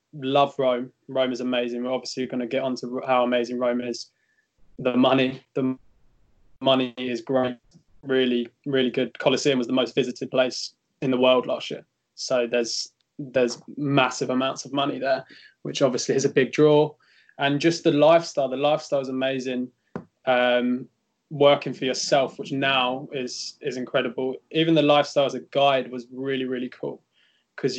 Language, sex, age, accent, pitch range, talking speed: English, male, 20-39, British, 125-140 Hz, 165 wpm